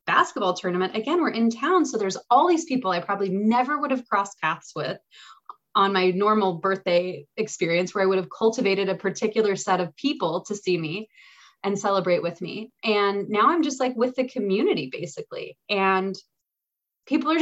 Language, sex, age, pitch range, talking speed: English, female, 20-39, 185-250 Hz, 185 wpm